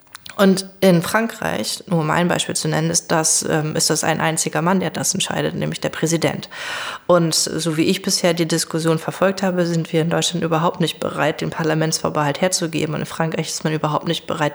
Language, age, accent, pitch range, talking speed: German, 20-39, German, 155-175 Hz, 200 wpm